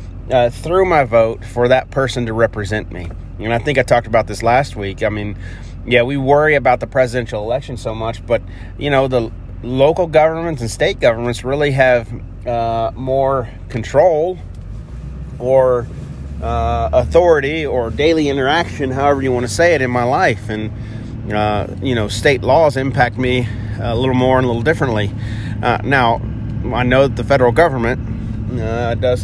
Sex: male